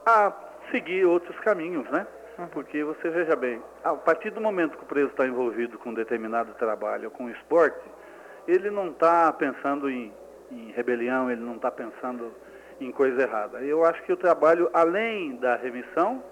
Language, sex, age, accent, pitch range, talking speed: Portuguese, male, 40-59, Brazilian, 130-180 Hz, 175 wpm